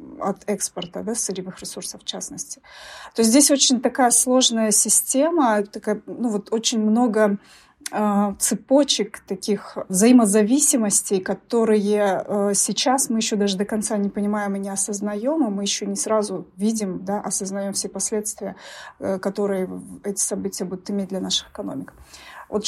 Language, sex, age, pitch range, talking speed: Russian, female, 30-49, 195-225 Hz, 150 wpm